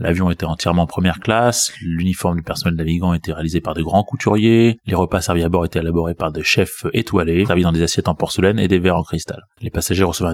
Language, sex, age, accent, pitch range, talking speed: French, male, 20-39, French, 85-100 Hz, 230 wpm